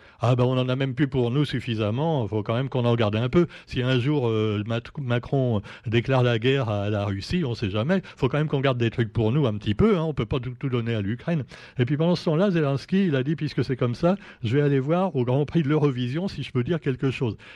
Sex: male